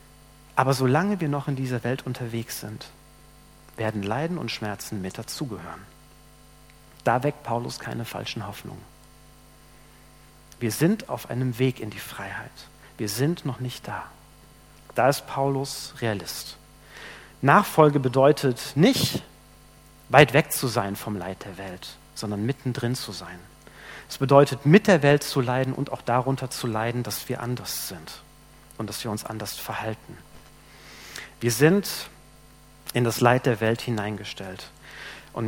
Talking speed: 140 wpm